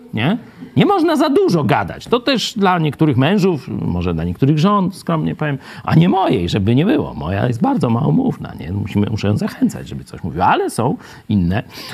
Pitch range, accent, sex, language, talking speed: 115-185 Hz, native, male, Polish, 185 wpm